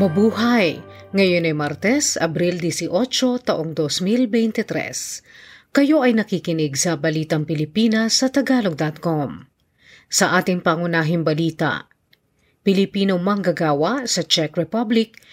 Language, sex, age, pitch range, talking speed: Filipino, female, 40-59, 160-230 Hz, 100 wpm